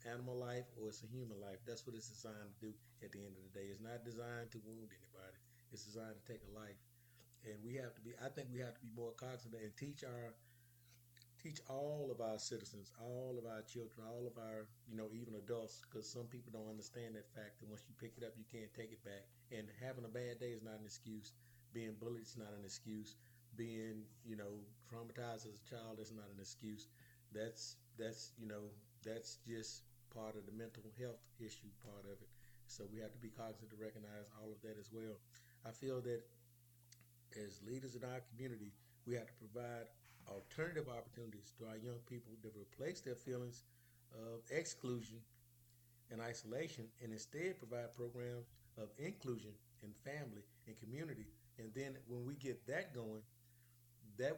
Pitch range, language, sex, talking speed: 110-120 Hz, English, male, 200 wpm